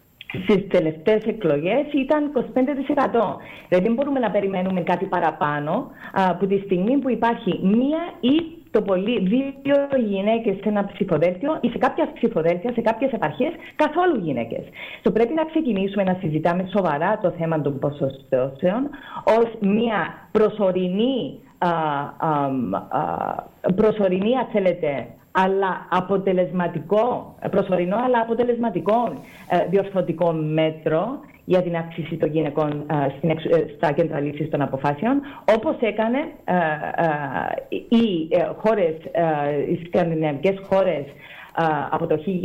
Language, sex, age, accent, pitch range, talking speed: Greek, female, 40-59, Spanish, 165-235 Hz, 105 wpm